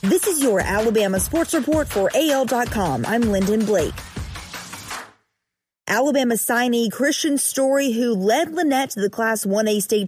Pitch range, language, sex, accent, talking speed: 210-265 Hz, English, female, American, 135 wpm